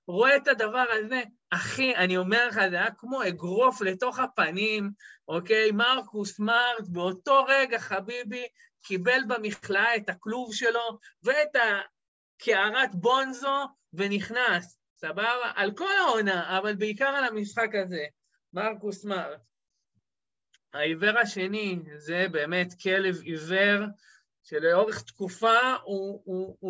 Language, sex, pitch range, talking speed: Hebrew, male, 175-235 Hz, 110 wpm